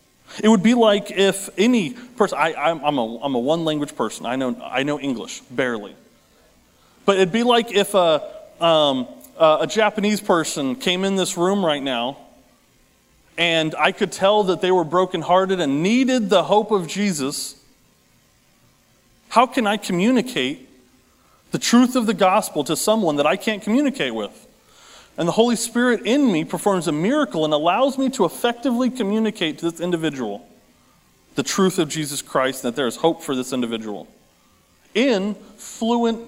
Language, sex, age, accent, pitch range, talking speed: English, male, 30-49, American, 155-225 Hz, 160 wpm